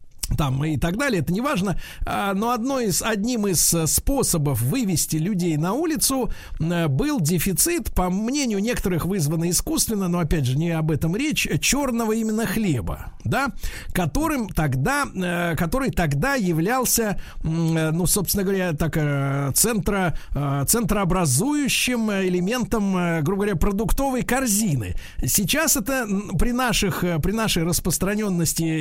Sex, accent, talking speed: male, native, 110 wpm